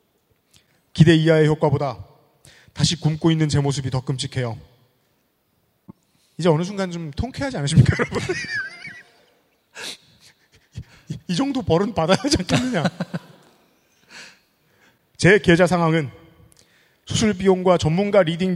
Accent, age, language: native, 30-49, Korean